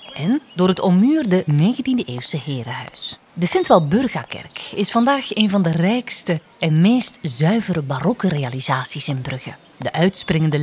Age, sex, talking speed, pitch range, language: 30-49, female, 135 wpm, 150-210 Hz, Dutch